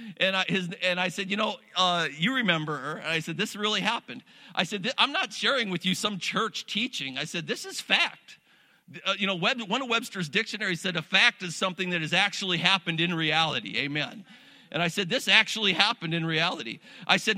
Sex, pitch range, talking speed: male, 160-205 Hz, 220 wpm